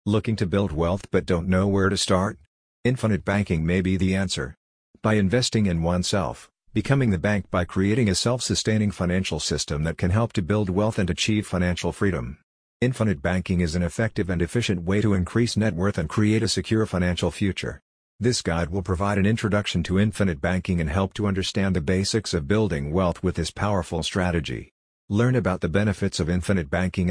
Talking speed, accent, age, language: 190 wpm, American, 50-69, English